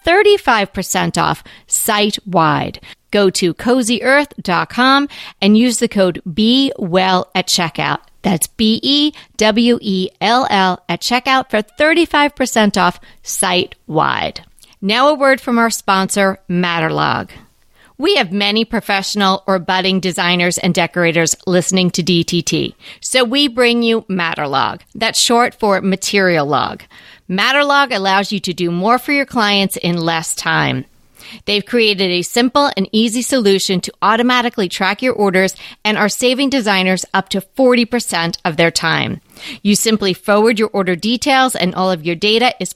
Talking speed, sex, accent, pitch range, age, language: 135 wpm, female, American, 185-245 Hz, 40-59, English